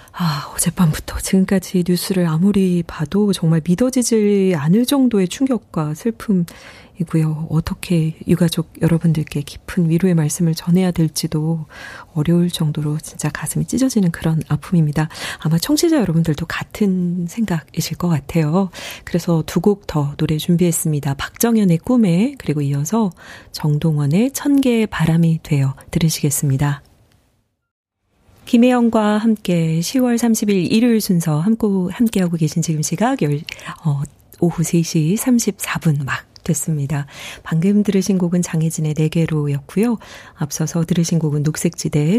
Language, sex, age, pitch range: Korean, female, 40-59, 150-185 Hz